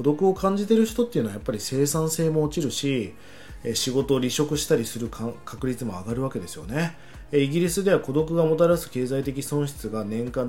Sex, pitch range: male, 115-155 Hz